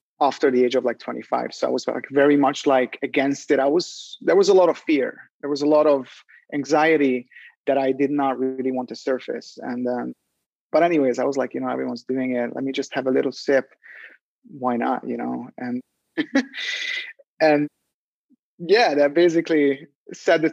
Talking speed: 195 wpm